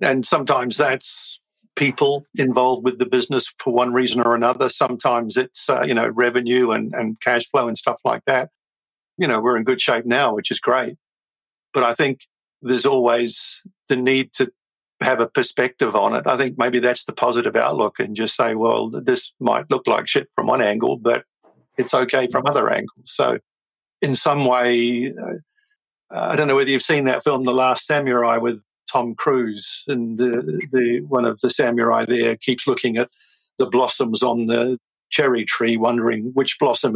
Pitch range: 120-130 Hz